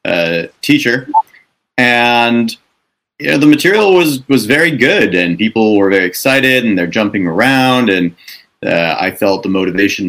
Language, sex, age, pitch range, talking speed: English, male, 30-49, 100-130 Hz, 155 wpm